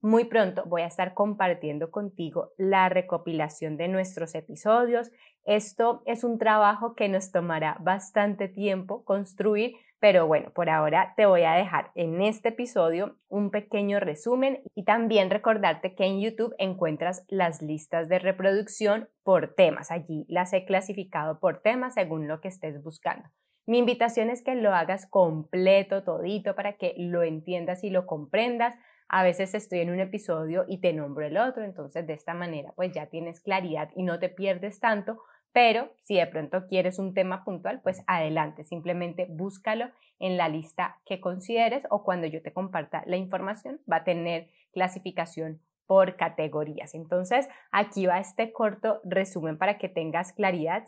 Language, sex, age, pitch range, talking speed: Spanish, female, 20-39, 170-210 Hz, 165 wpm